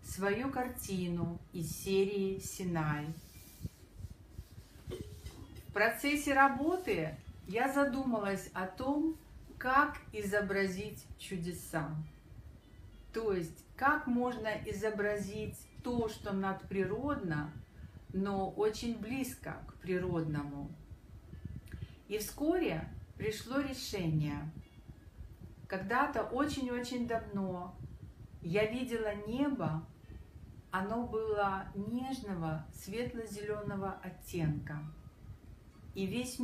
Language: Russian